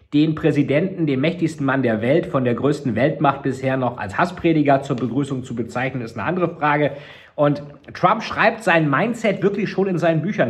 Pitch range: 135-165 Hz